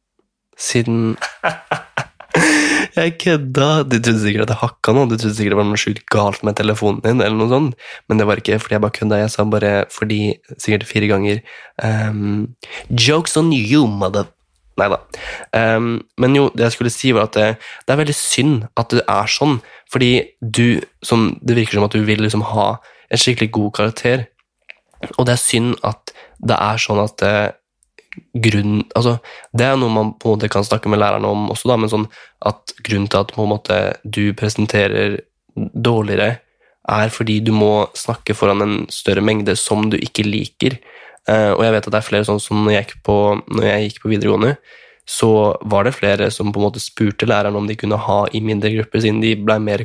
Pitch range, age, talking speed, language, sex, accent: 105-115 Hz, 20-39, 200 wpm, English, male, Swedish